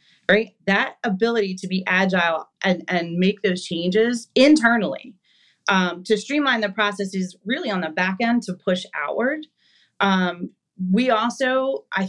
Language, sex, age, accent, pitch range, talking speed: English, female, 30-49, American, 185-230 Hz, 145 wpm